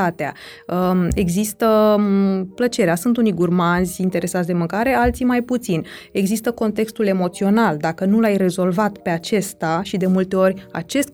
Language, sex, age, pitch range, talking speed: Romanian, female, 20-39, 180-225 Hz, 135 wpm